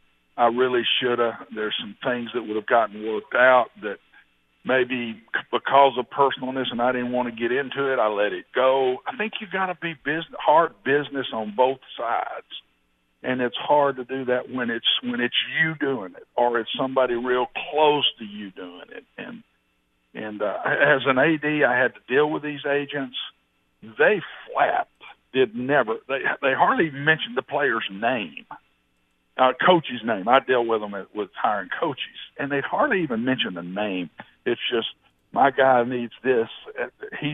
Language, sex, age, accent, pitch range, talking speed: English, male, 50-69, American, 105-140 Hz, 180 wpm